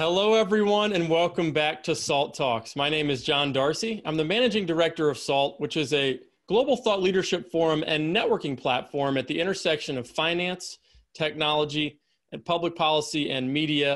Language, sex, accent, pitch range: English, male, American, 135-170 Hz